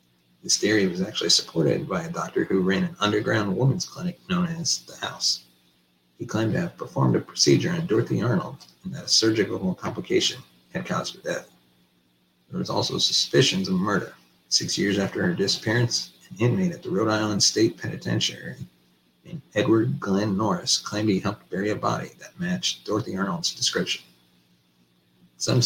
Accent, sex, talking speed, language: American, male, 170 wpm, English